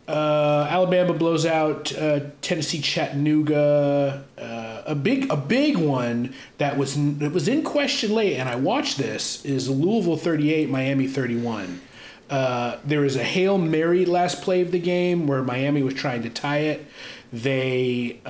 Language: English